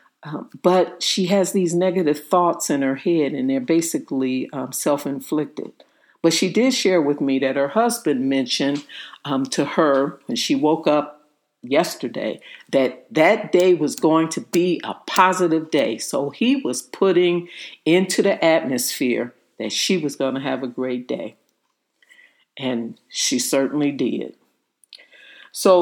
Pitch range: 140-195 Hz